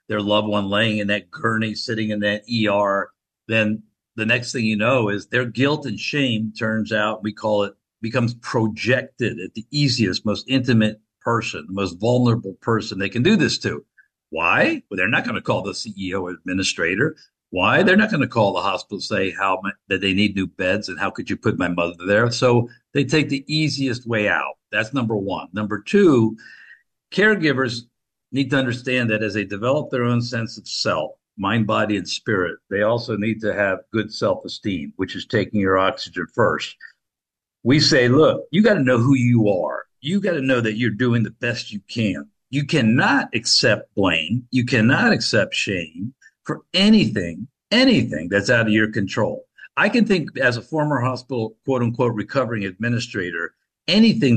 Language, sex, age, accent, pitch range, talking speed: English, male, 50-69, American, 105-130 Hz, 185 wpm